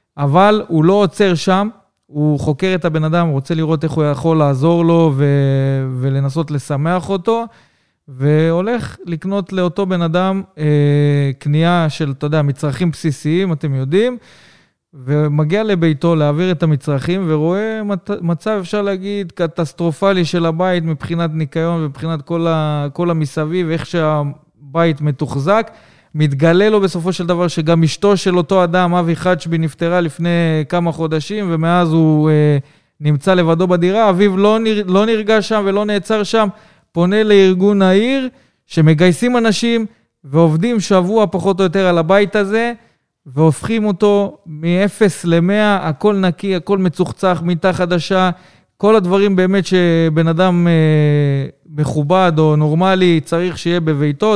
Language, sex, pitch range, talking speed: Hebrew, male, 155-195 Hz, 135 wpm